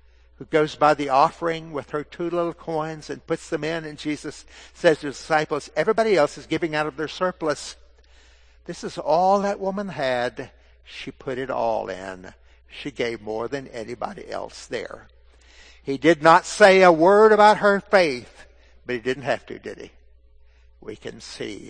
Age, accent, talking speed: 60-79, American, 180 wpm